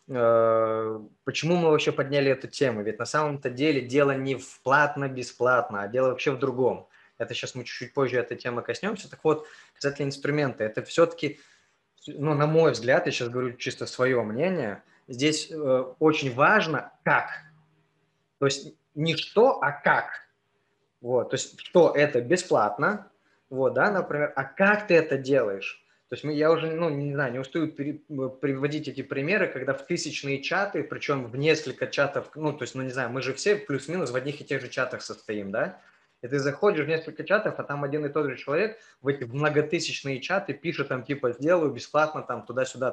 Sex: male